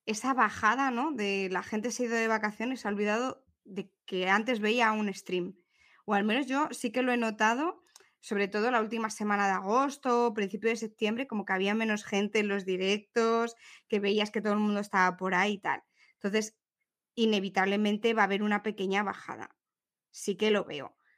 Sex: female